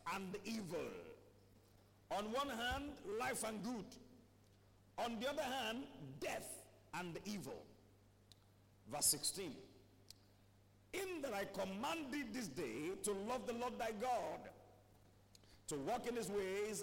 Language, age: English, 50-69